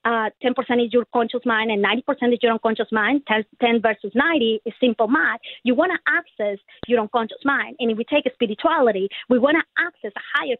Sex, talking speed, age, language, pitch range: female, 215 wpm, 30-49, English, 220-285 Hz